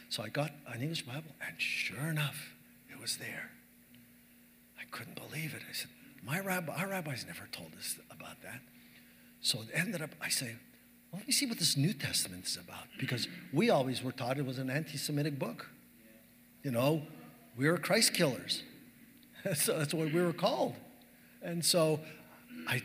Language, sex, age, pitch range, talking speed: English, male, 60-79, 125-165 Hz, 175 wpm